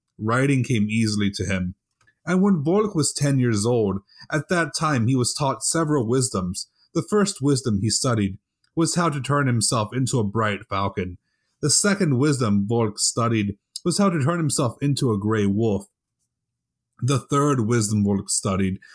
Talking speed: 170 wpm